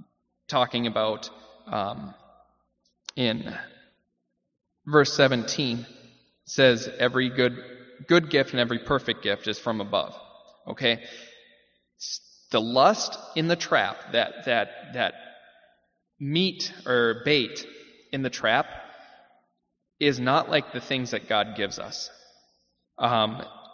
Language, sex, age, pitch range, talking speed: English, male, 20-39, 115-145 Hz, 110 wpm